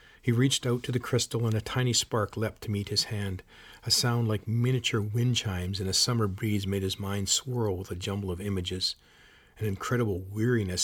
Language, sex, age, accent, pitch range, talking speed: English, male, 40-59, American, 95-115 Hz, 205 wpm